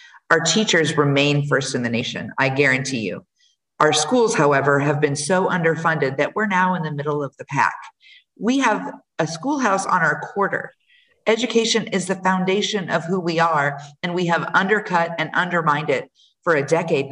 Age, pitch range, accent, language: 50-69, 150-195 Hz, American, English